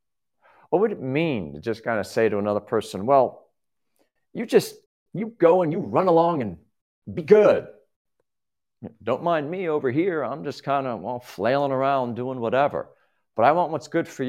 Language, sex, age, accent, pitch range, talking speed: English, male, 50-69, American, 130-175 Hz, 185 wpm